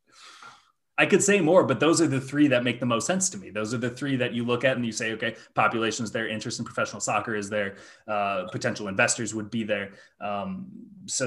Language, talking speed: English, 235 wpm